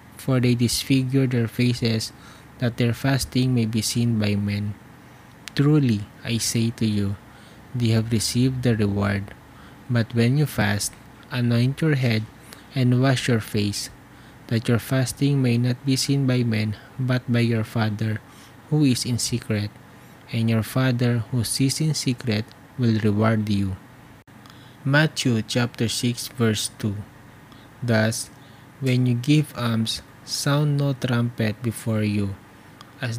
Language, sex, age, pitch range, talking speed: English, male, 20-39, 110-130 Hz, 140 wpm